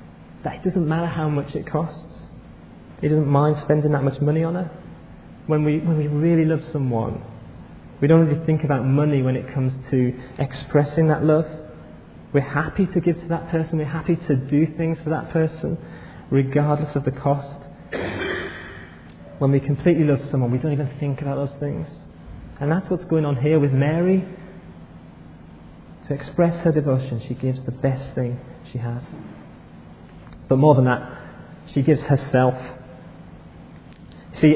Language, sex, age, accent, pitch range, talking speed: English, male, 30-49, British, 130-155 Hz, 165 wpm